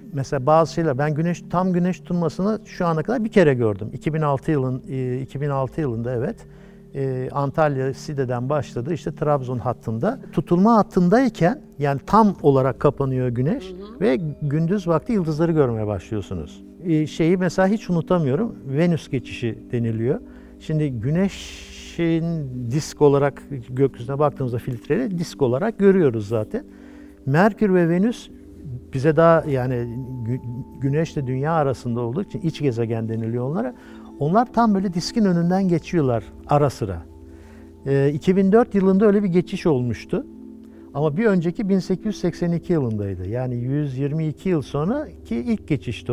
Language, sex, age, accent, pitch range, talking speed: Turkish, male, 60-79, native, 125-185 Hz, 125 wpm